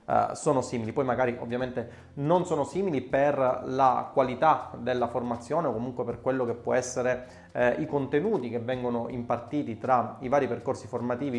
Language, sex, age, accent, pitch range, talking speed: Italian, male, 20-39, native, 120-145 Hz, 165 wpm